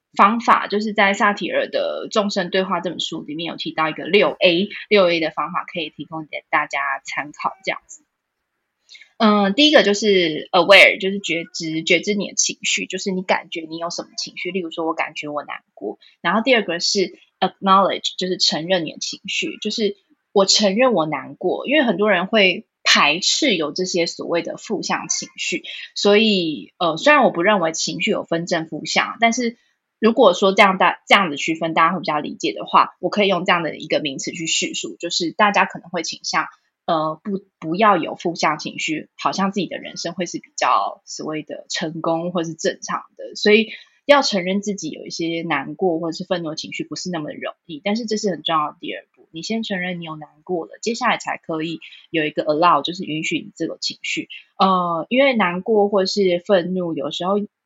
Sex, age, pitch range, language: female, 20-39, 165-210 Hz, Chinese